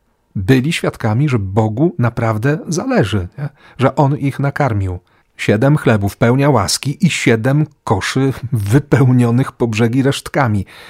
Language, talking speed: Polish, 120 wpm